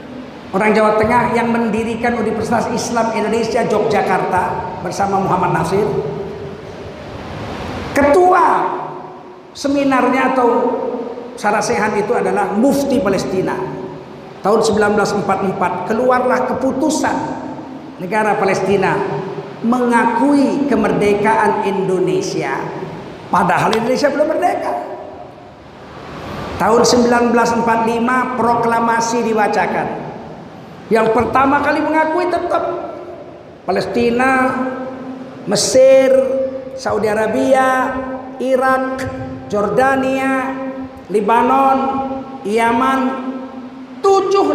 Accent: native